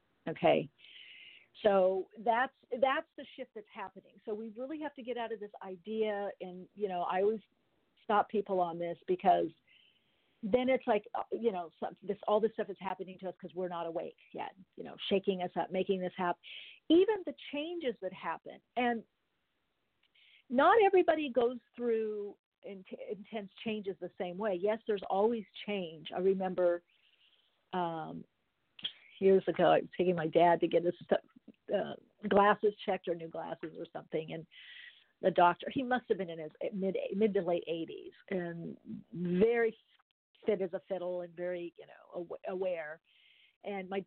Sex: female